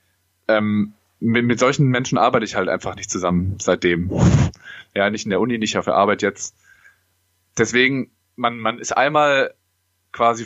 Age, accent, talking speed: 20-39, German, 160 wpm